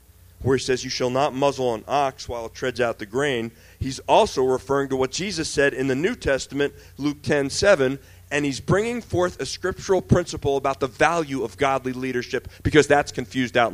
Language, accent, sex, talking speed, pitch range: Russian, American, male, 200 wpm, 105-160 Hz